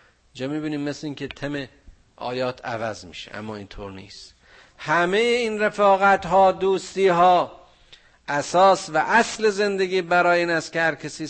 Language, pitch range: Persian, 110-155 Hz